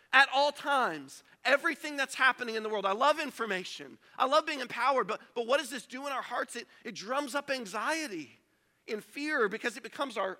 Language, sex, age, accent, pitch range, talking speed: English, male, 40-59, American, 235-285 Hz, 210 wpm